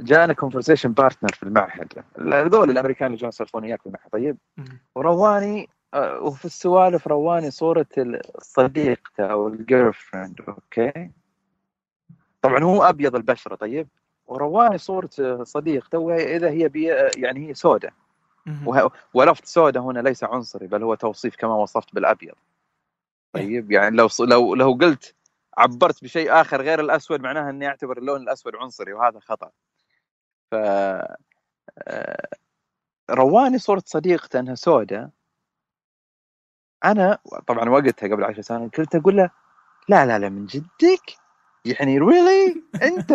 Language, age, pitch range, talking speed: Arabic, 30-49, 130-185 Hz, 120 wpm